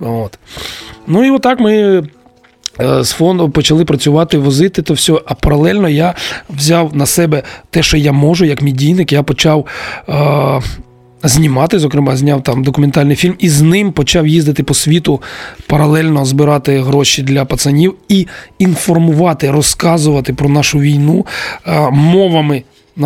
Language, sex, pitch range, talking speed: Ukrainian, male, 145-170 Hz, 140 wpm